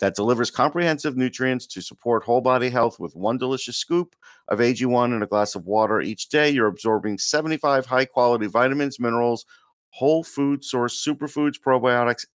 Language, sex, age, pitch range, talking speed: English, male, 50-69, 115-140 Hz, 165 wpm